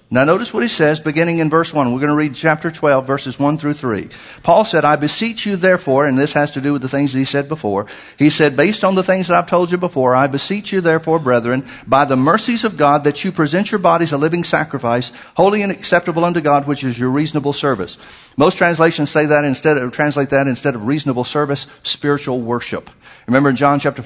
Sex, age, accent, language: male, 50-69, American, English